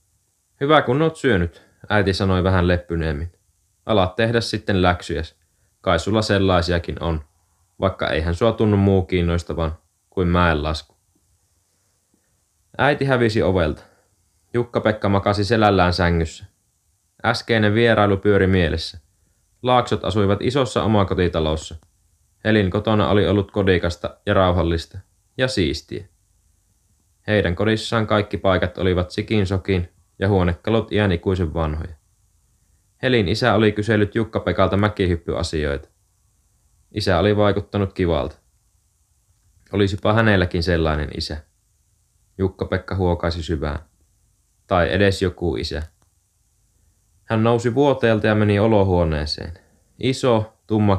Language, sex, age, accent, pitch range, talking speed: Finnish, male, 20-39, native, 85-105 Hz, 105 wpm